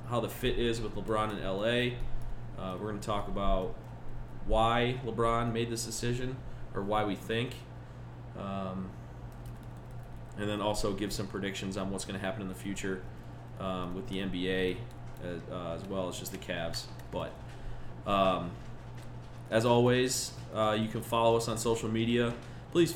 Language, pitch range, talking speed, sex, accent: English, 100-115 Hz, 165 wpm, male, American